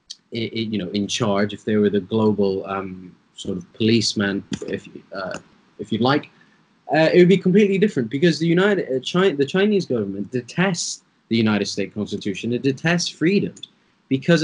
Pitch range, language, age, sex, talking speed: 115-160 Hz, English, 20-39, male, 180 wpm